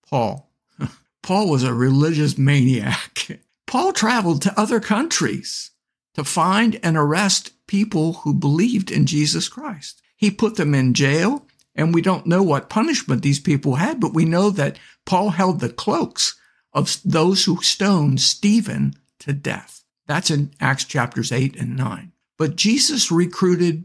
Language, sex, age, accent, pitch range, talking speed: English, male, 60-79, American, 135-180 Hz, 150 wpm